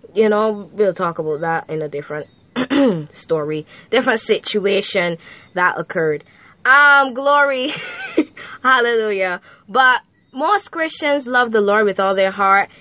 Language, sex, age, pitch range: Japanese, female, 10-29, 175-265 Hz